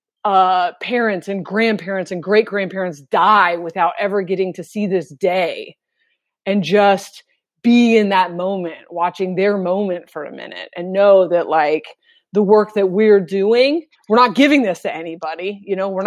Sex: female